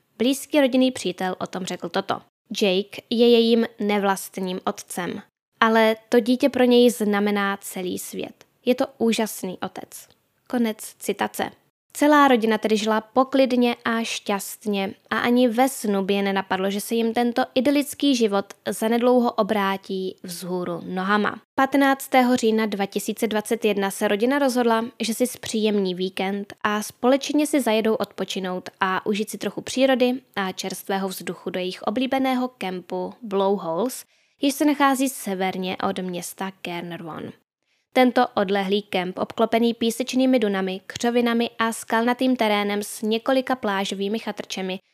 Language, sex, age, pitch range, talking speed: Czech, female, 10-29, 195-245 Hz, 135 wpm